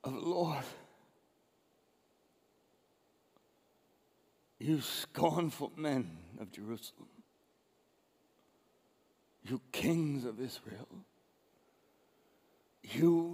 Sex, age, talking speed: male, 60-79, 60 wpm